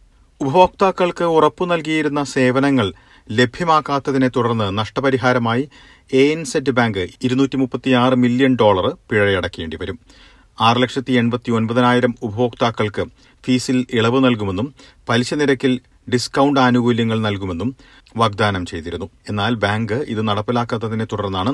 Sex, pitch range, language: male, 105-130 Hz, Malayalam